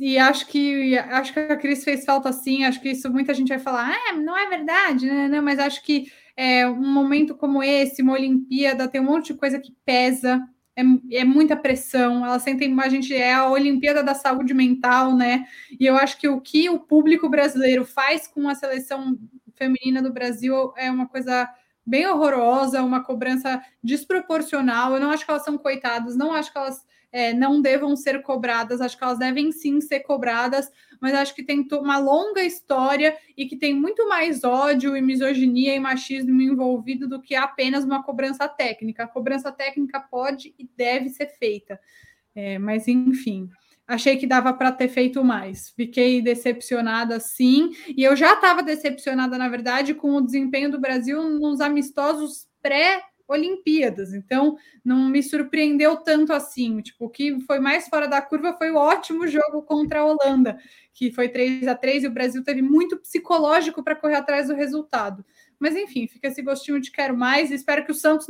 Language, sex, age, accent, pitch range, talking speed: Portuguese, female, 20-39, Brazilian, 255-290 Hz, 190 wpm